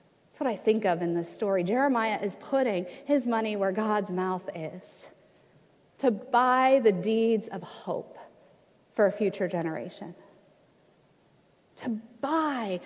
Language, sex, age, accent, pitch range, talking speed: English, female, 40-59, American, 205-285 Hz, 130 wpm